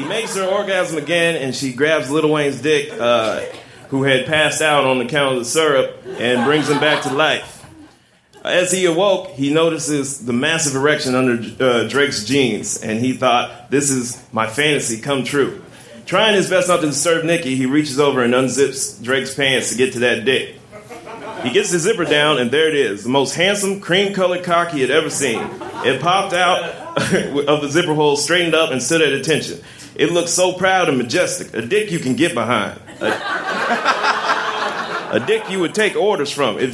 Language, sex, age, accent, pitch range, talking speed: English, male, 30-49, American, 140-180 Hz, 195 wpm